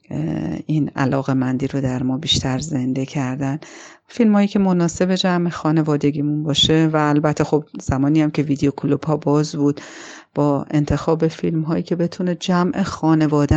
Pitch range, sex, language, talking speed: 135-160 Hz, female, Persian, 155 wpm